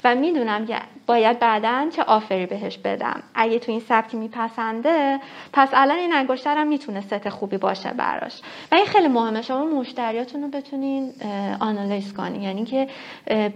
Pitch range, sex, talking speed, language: 210-265 Hz, female, 150 wpm, Persian